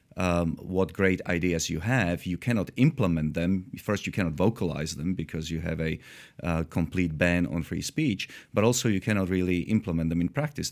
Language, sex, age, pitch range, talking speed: English, male, 30-49, 85-110 Hz, 190 wpm